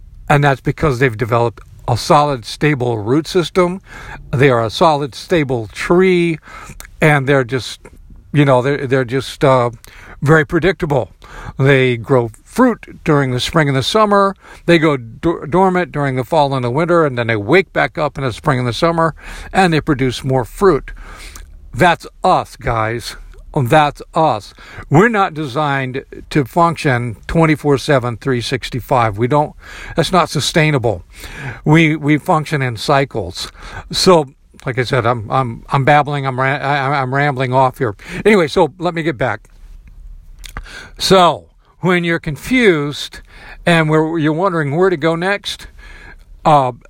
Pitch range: 125-165 Hz